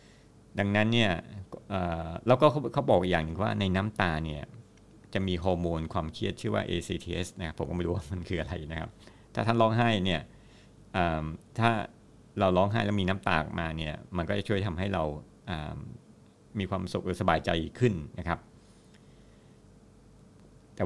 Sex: male